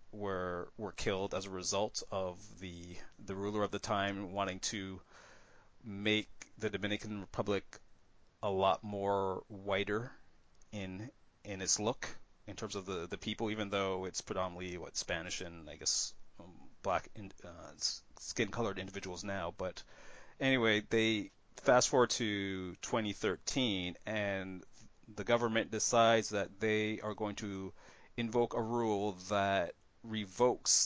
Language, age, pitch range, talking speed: English, 30-49, 95-110 Hz, 135 wpm